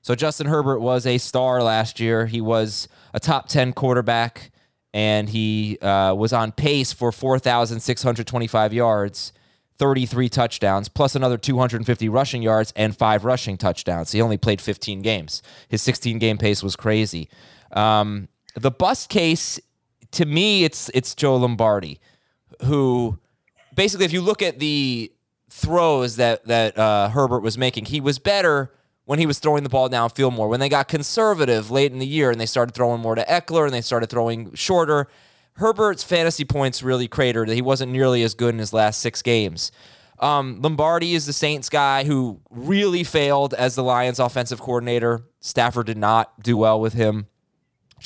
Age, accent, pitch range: 20-39, American, 110-140 Hz